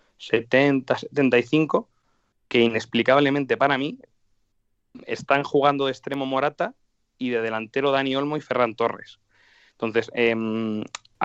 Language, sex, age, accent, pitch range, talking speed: Spanish, male, 20-39, Spanish, 110-130 Hz, 110 wpm